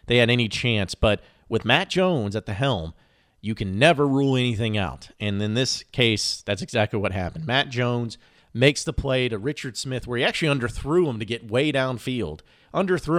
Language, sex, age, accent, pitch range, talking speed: English, male, 40-59, American, 105-135 Hz, 195 wpm